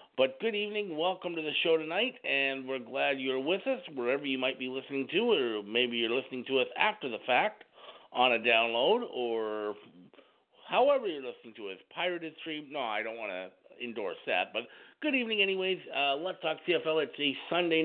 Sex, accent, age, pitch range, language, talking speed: male, American, 50-69, 135-190 Hz, English, 195 wpm